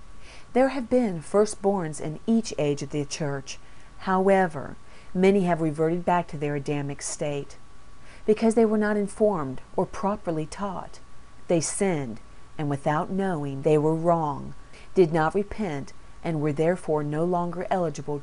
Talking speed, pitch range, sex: 145 wpm, 145-195 Hz, female